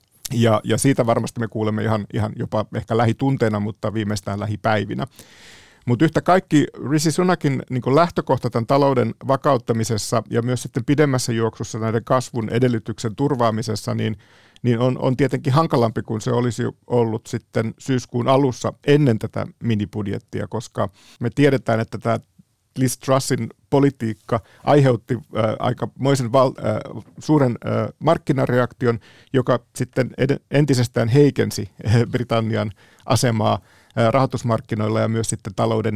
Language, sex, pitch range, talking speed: Finnish, male, 110-130 Hz, 130 wpm